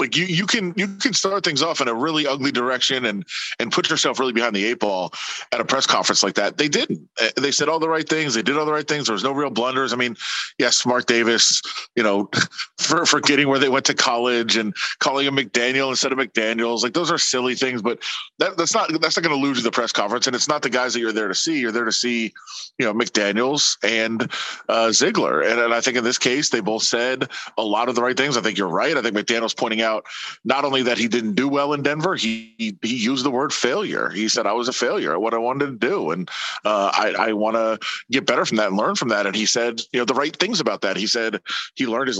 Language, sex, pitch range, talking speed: English, male, 120-145 Hz, 270 wpm